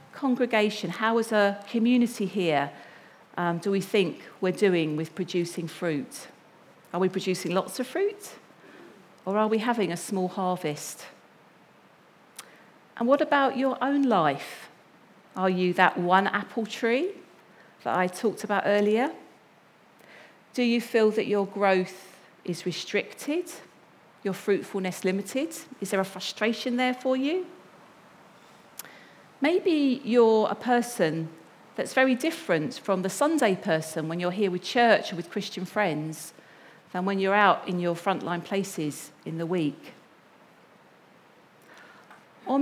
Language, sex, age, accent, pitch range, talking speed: English, female, 40-59, British, 185-245 Hz, 135 wpm